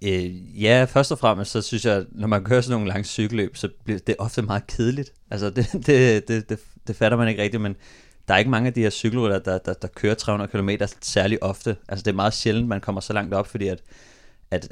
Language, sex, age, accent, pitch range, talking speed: Danish, male, 30-49, native, 95-115 Hz, 255 wpm